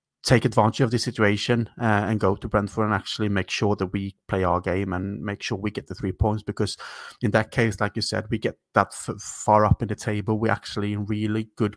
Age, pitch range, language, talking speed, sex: 30-49, 105-115 Hz, English, 245 wpm, male